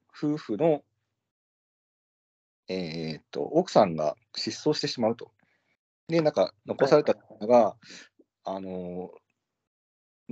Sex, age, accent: male, 40-59, native